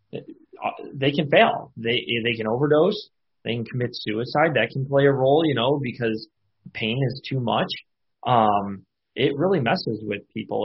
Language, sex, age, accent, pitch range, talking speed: English, male, 20-39, American, 110-135 Hz, 165 wpm